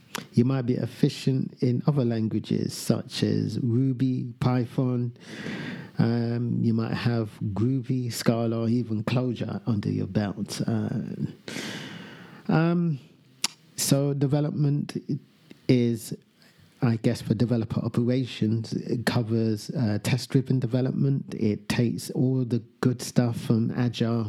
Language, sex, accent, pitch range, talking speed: English, male, British, 110-130 Hz, 115 wpm